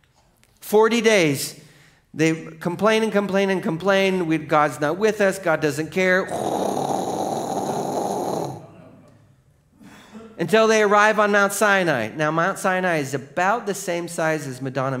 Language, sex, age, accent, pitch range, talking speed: English, male, 40-59, American, 130-180 Hz, 130 wpm